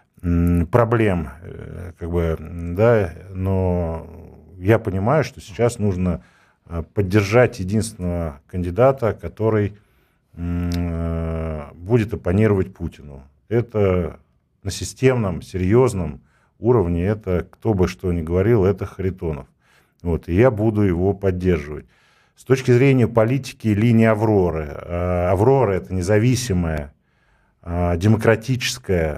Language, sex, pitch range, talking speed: Russian, male, 85-110 Hz, 95 wpm